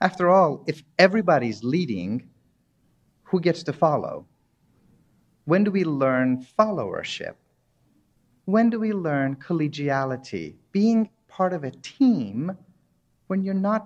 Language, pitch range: English, 125-190 Hz